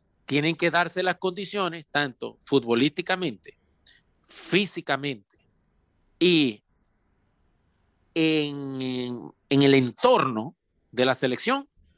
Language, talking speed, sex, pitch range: Spanish, 80 wpm, male, 135-195 Hz